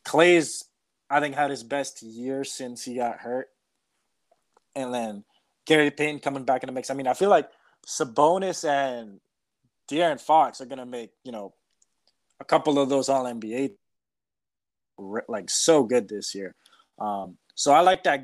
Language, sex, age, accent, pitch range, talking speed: English, male, 20-39, American, 125-150 Hz, 170 wpm